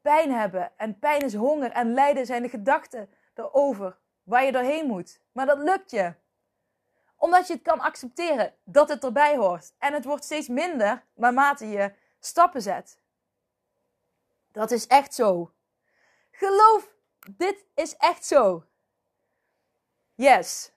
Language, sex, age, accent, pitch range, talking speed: Dutch, female, 20-39, Dutch, 215-285 Hz, 140 wpm